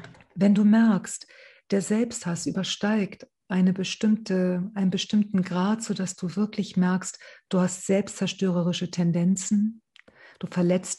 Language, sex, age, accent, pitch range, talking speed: German, female, 50-69, German, 180-210 Hz, 105 wpm